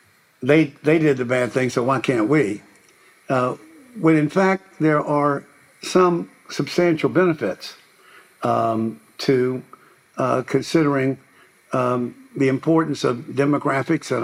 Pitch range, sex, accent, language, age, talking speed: 120-150 Hz, male, American, English, 60-79, 120 wpm